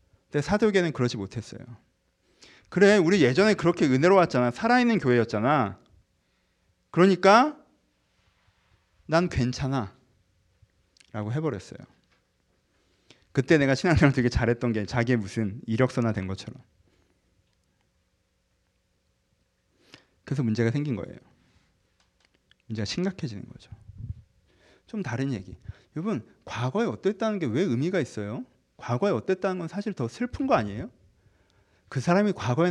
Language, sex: Korean, male